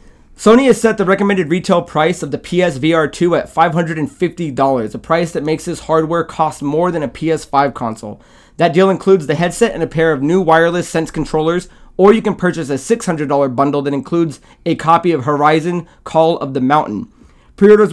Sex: male